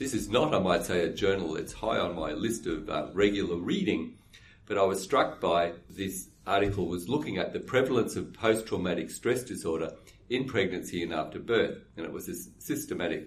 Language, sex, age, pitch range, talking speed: English, male, 50-69, 85-105 Hz, 195 wpm